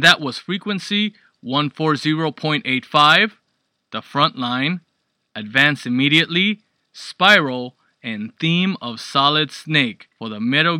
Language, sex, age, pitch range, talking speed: English, male, 20-39, 130-175 Hz, 105 wpm